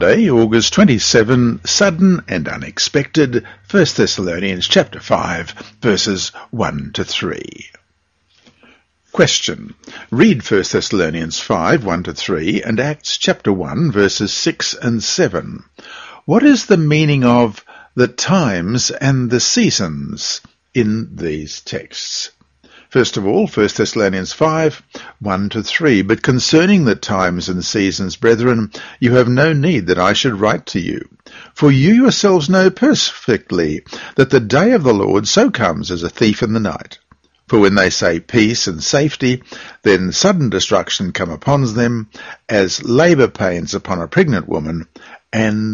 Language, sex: English, male